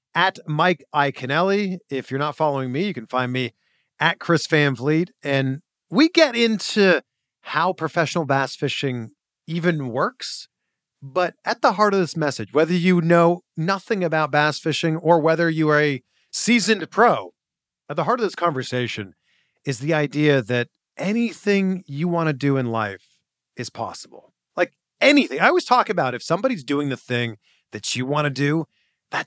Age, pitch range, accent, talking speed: 40-59, 130-190 Hz, American, 170 wpm